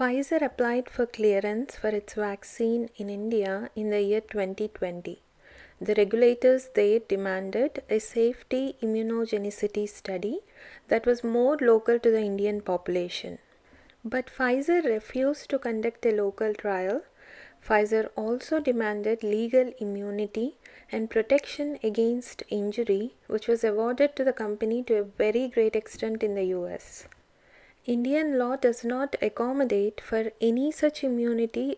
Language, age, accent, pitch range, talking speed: Telugu, 30-49, native, 210-245 Hz, 130 wpm